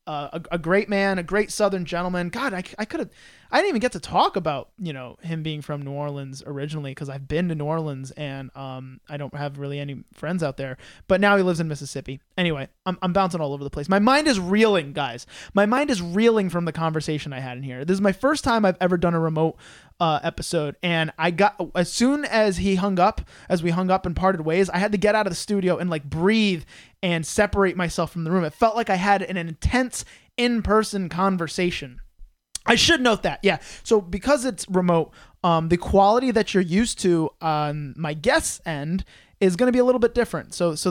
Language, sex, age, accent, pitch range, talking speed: English, male, 20-39, American, 150-200 Hz, 235 wpm